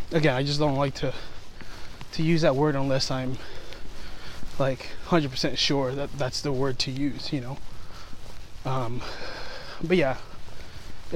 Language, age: English, 20-39